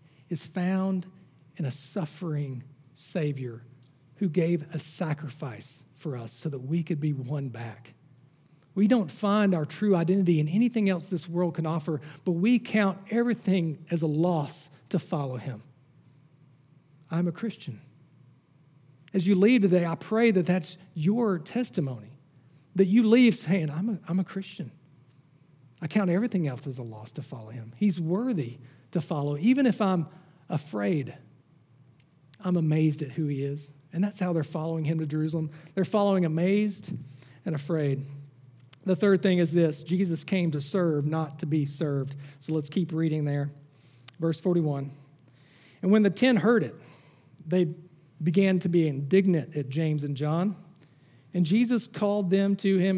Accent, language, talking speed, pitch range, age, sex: American, English, 160 wpm, 145-185 Hz, 40-59, male